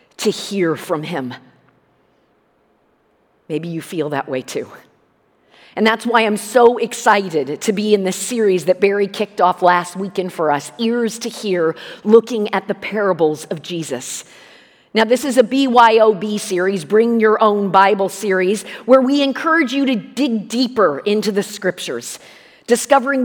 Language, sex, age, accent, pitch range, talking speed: English, female, 40-59, American, 175-235 Hz, 155 wpm